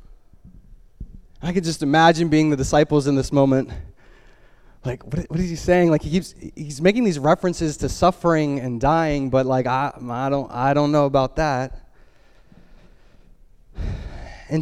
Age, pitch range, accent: 20-39, 140-185 Hz, American